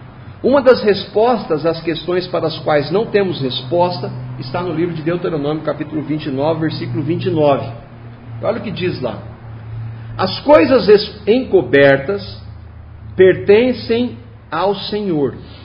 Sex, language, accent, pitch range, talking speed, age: male, Portuguese, Brazilian, 125-200 Hz, 120 wpm, 50-69